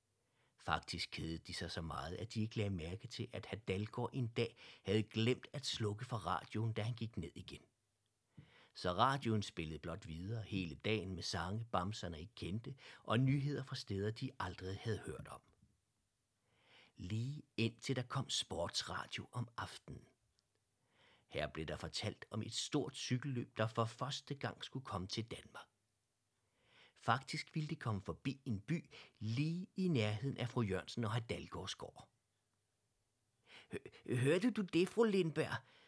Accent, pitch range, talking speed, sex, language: native, 105-130 Hz, 150 wpm, male, Danish